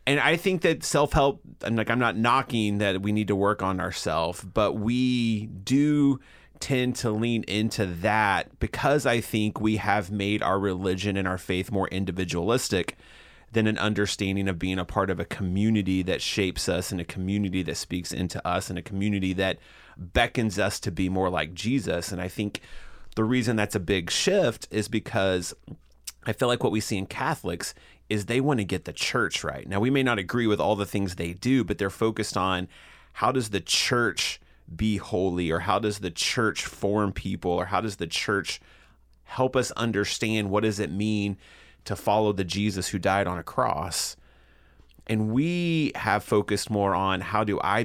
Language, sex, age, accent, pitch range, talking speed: English, male, 30-49, American, 95-115 Hz, 195 wpm